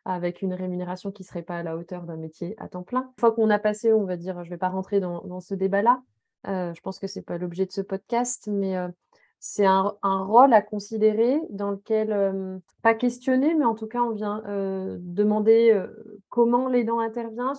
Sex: female